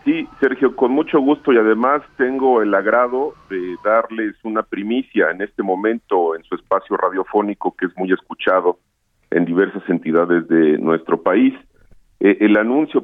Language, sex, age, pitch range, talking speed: Spanish, male, 40-59, 95-125 Hz, 155 wpm